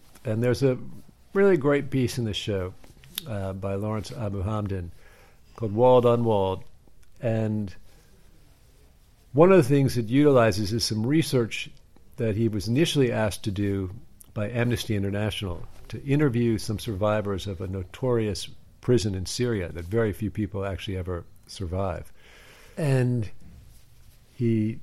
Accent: American